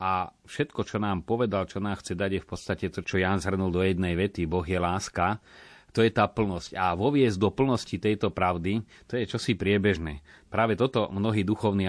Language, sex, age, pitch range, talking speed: Slovak, male, 30-49, 90-110 Hz, 200 wpm